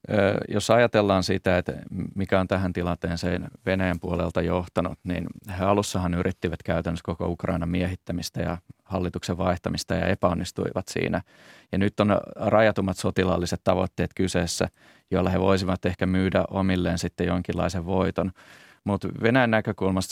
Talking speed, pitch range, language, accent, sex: 130 wpm, 90-100 Hz, Finnish, native, male